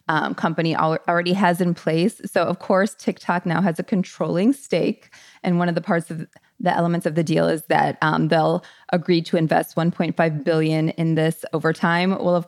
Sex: female